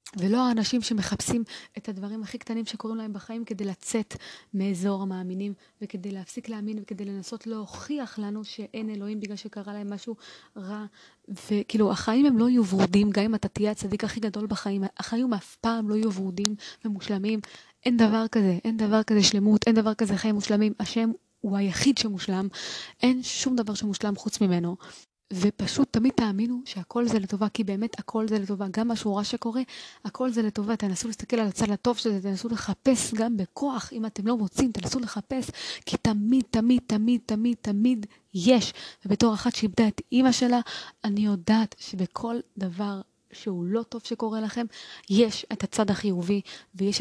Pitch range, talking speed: 200-230 Hz, 165 wpm